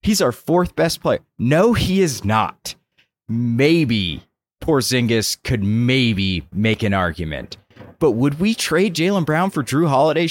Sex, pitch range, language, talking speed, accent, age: male, 100-150 Hz, English, 145 wpm, American, 30-49